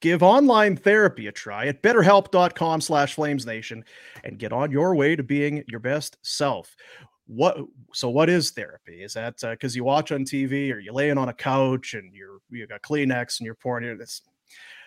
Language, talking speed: English, 200 wpm